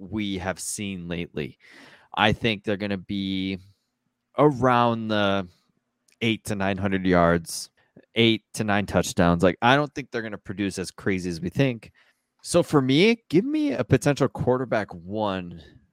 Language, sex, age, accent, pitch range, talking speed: English, male, 20-39, American, 95-125 Hz, 160 wpm